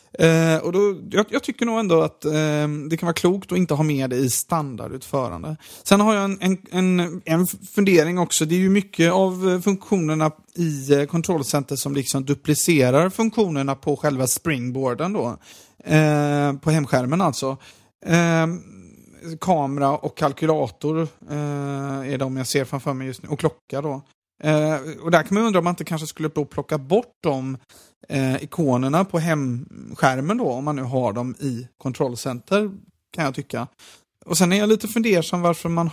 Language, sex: Swedish, male